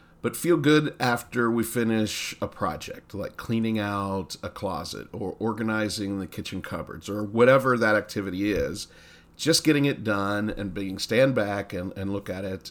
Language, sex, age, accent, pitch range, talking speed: English, male, 40-59, American, 90-115 Hz, 170 wpm